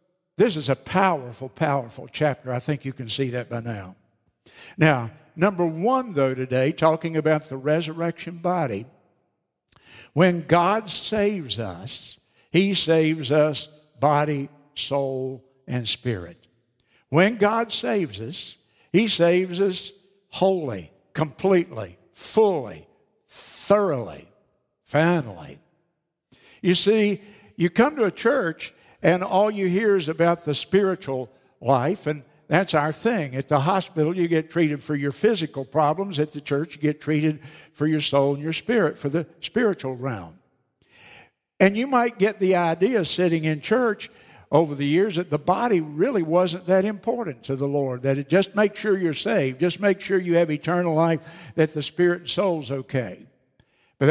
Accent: American